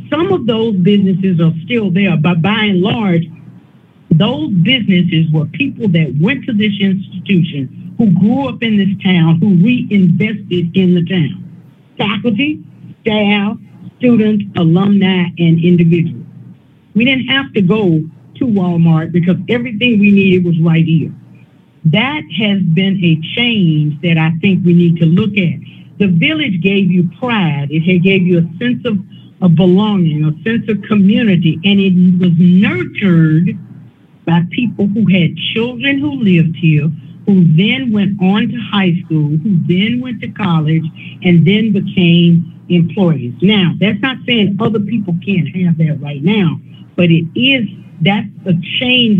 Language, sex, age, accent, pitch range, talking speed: English, female, 50-69, American, 165-205 Hz, 155 wpm